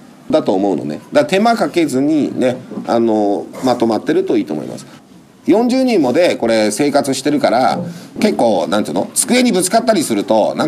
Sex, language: male, Japanese